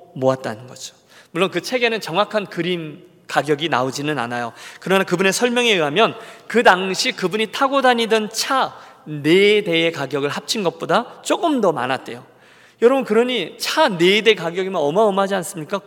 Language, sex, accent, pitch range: Korean, male, native, 155-225 Hz